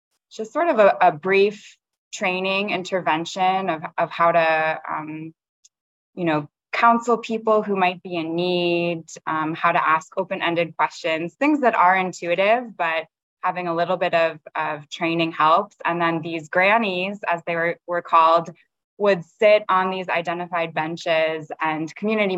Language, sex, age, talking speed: English, female, 20-39, 160 wpm